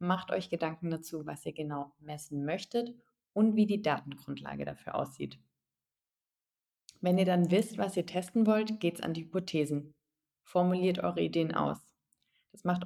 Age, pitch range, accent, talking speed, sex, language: 30-49, 150-190 Hz, German, 160 wpm, female, German